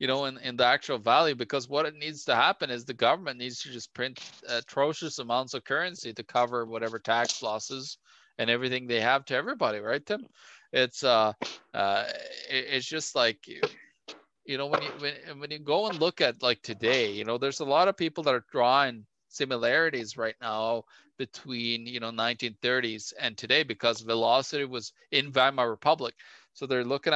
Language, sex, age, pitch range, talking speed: English, male, 20-39, 115-135 Hz, 190 wpm